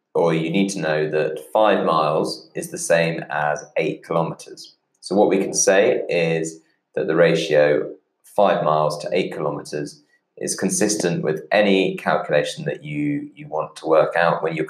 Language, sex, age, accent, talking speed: English, male, 20-39, British, 170 wpm